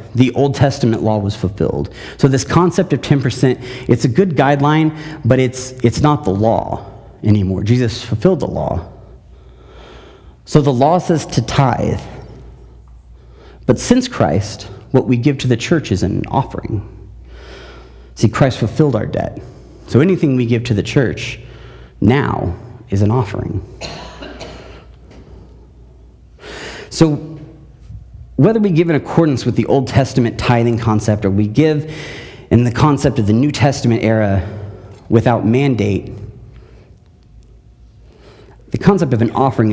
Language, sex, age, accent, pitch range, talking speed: English, male, 40-59, American, 105-140 Hz, 135 wpm